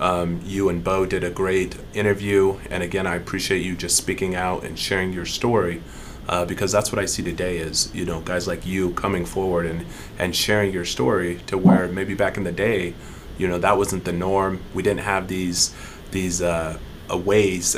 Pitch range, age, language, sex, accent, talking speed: 85-95 Hz, 30-49, English, male, American, 205 wpm